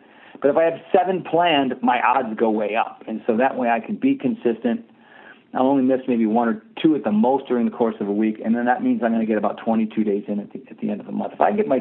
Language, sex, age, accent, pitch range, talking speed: English, male, 50-69, American, 120-155 Hz, 305 wpm